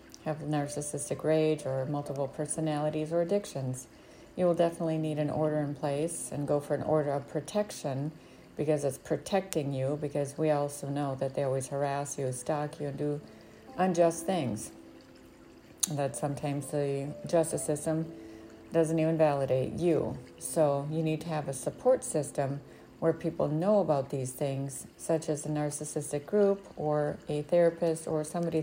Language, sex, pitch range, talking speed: English, female, 140-165 Hz, 155 wpm